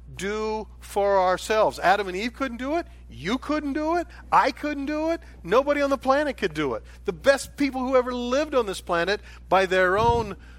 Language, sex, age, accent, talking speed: English, male, 50-69, American, 205 wpm